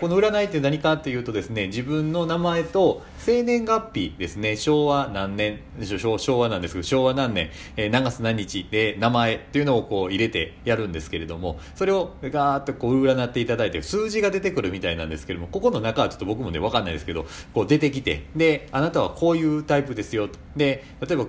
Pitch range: 90-145 Hz